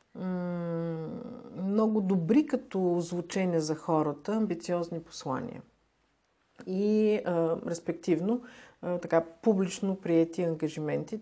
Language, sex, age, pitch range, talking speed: Bulgarian, female, 50-69, 160-205 Hz, 85 wpm